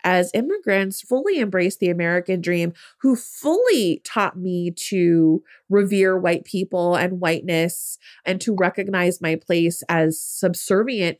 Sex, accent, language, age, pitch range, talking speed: female, American, English, 30-49, 175-235 Hz, 130 wpm